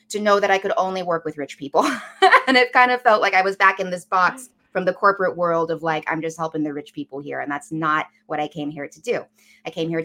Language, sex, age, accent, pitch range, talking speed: English, female, 20-39, American, 160-210 Hz, 280 wpm